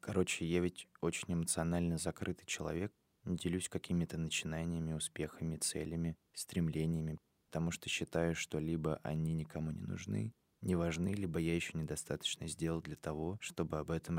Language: Russian